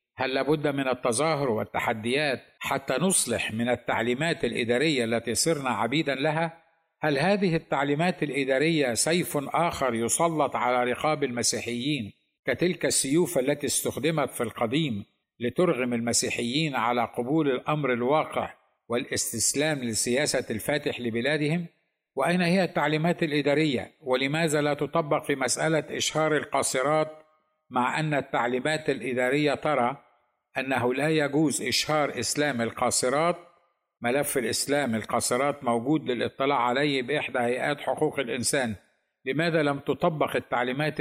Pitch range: 125-155 Hz